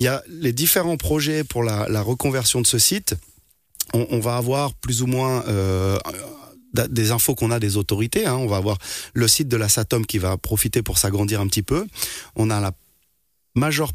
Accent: French